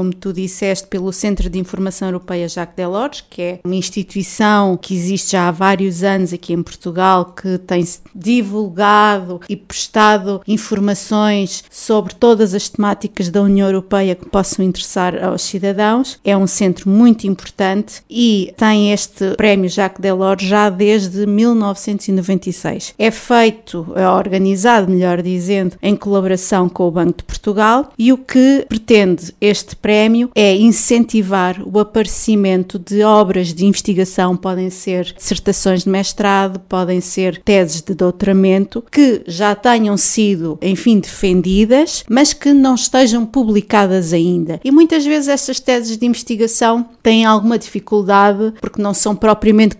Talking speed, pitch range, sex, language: 140 wpm, 185-220 Hz, female, English